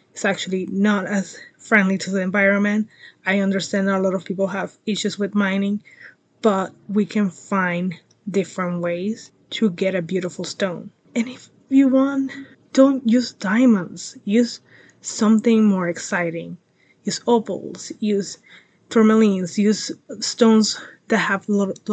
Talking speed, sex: 135 wpm, female